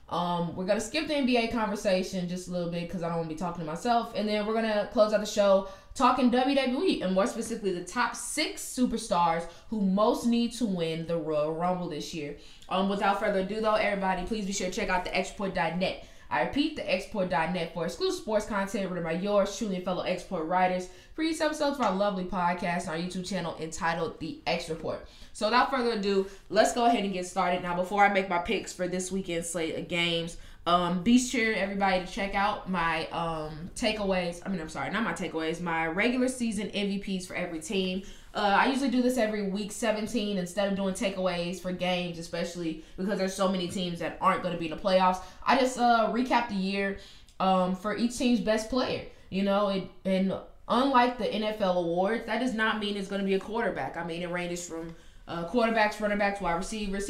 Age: 10-29